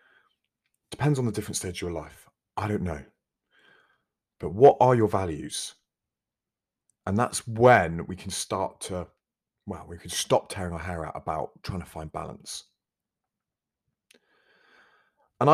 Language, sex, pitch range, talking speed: English, male, 85-125 Hz, 145 wpm